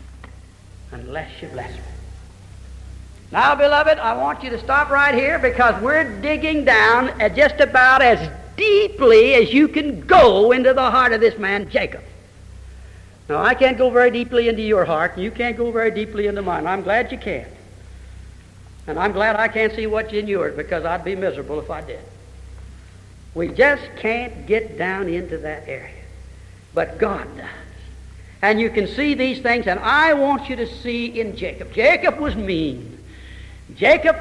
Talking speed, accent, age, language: 170 wpm, American, 60-79, English